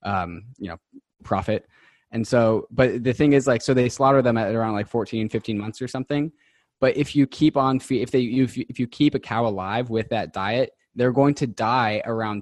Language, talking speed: English, 225 wpm